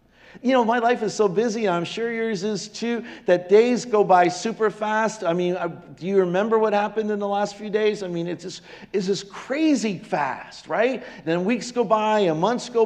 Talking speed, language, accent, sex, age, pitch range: 210 wpm, English, American, male, 50-69, 190-245 Hz